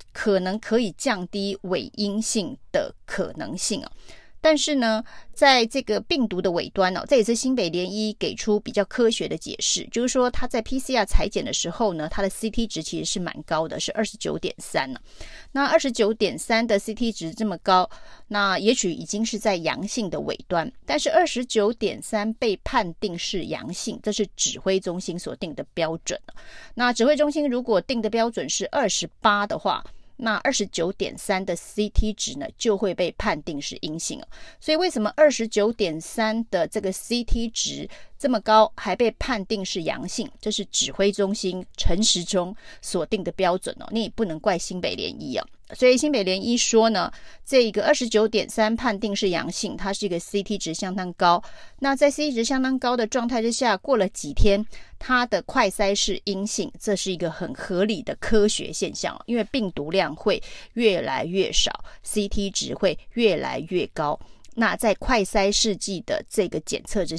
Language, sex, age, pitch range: Chinese, female, 30-49, 195-245 Hz